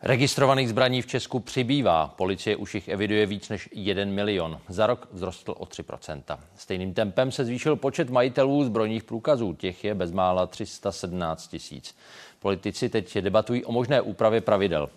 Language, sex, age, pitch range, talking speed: Czech, male, 40-59, 90-130 Hz, 150 wpm